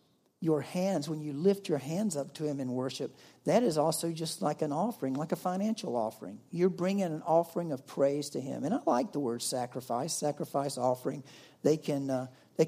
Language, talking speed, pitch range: English, 205 wpm, 150-195 Hz